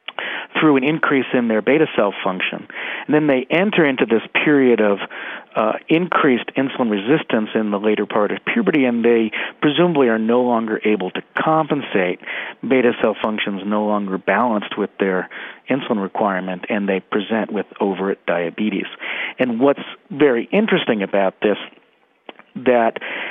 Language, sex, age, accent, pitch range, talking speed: English, male, 50-69, American, 100-140 Hz, 150 wpm